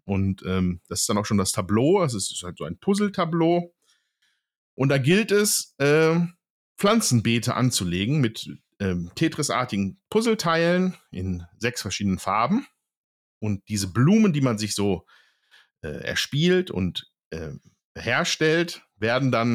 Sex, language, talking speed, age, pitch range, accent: male, German, 135 wpm, 50-69, 95-160 Hz, German